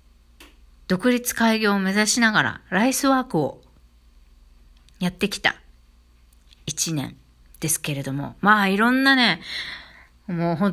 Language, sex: Japanese, female